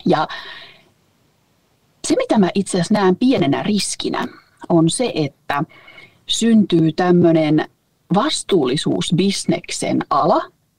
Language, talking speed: Finnish, 90 wpm